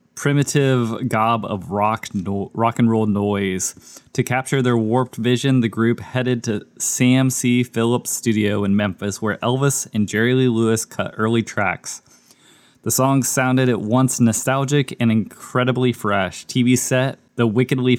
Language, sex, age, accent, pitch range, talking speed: English, male, 20-39, American, 110-125 Hz, 155 wpm